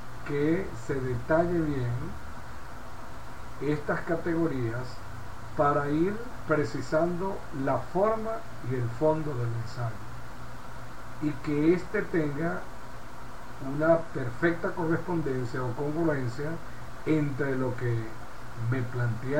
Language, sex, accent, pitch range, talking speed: Spanish, male, American, 120-160 Hz, 95 wpm